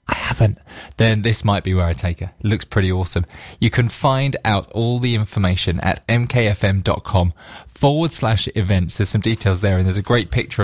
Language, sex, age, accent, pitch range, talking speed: English, male, 20-39, British, 95-135 Hz, 190 wpm